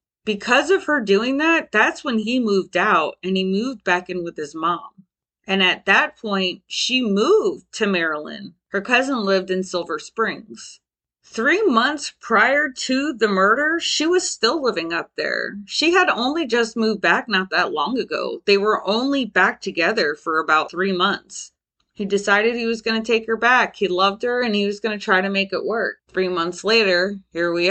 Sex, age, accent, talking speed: female, 30-49, American, 195 wpm